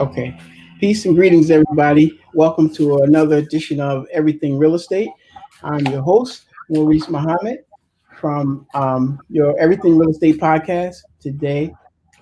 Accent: American